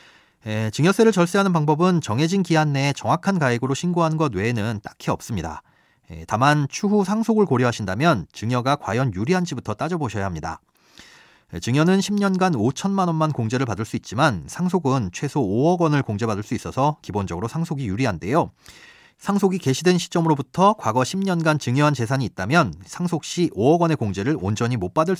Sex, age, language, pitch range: male, 30-49, Korean, 115-175 Hz